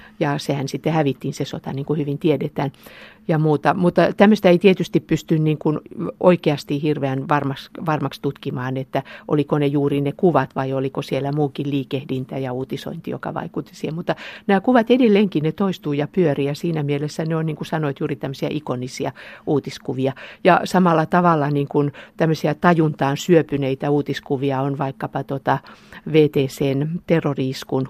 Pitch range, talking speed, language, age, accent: 135-160 Hz, 160 wpm, Finnish, 50-69, native